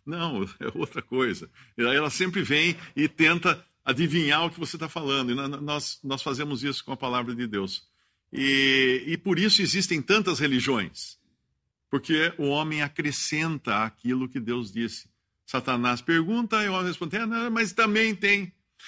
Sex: male